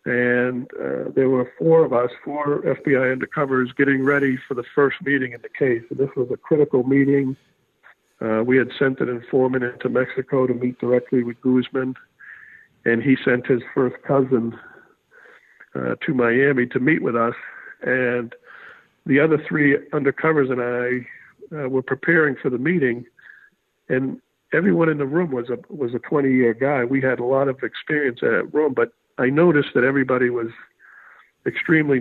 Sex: male